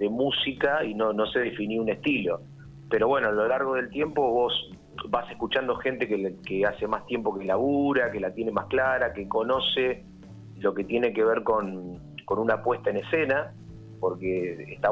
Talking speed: 195 wpm